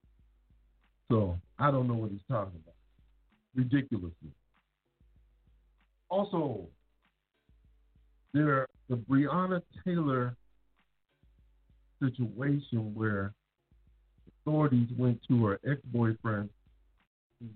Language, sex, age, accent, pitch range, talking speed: English, male, 50-69, American, 90-130 Hz, 75 wpm